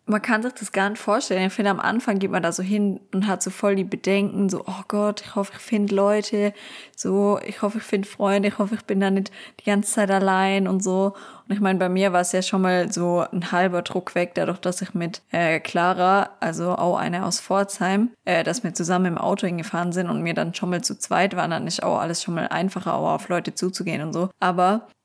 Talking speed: 250 wpm